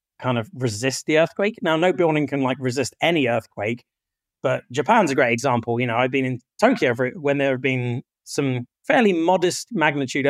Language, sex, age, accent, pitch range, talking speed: English, male, 30-49, British, 120-150 Hz, 190 wpm